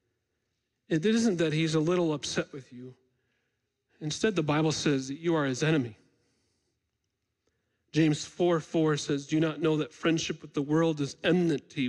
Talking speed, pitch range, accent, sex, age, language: 165 wpm, 120-155 Hz, American, male, 40-59, English